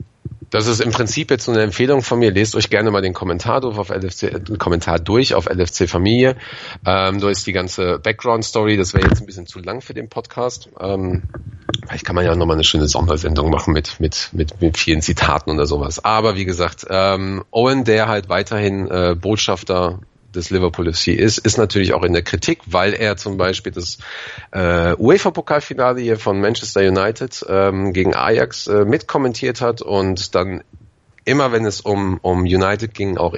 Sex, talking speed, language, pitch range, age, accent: male, 190 wpm, German, 85-110 Hz, 40-59, German